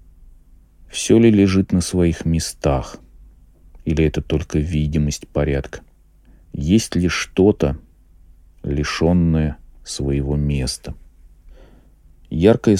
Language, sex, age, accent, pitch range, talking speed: Russian, male, 40-59, native, 75-85 Hz, 85 wpm